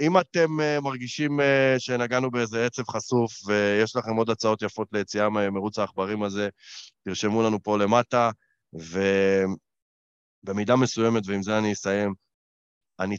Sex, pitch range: male, 95-110 Hz